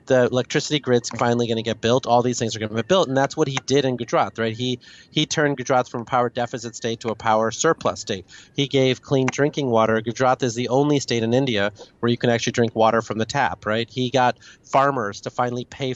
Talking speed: 250 wpm